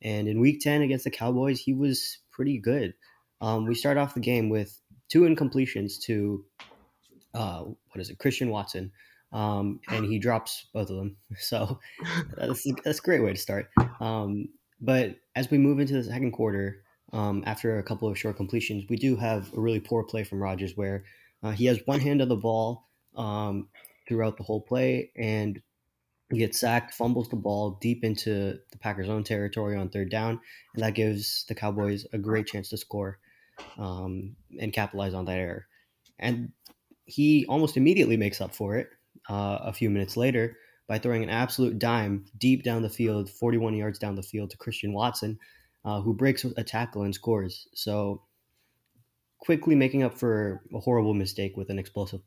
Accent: American